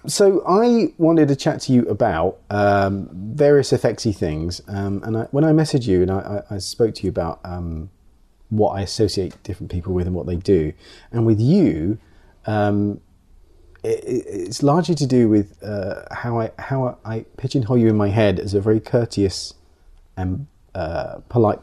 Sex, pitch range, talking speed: male, 90-120 Hz, 180 wpm